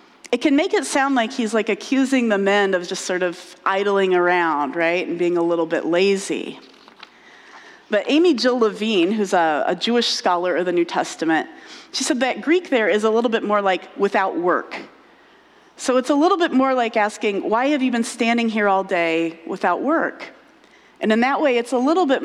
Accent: American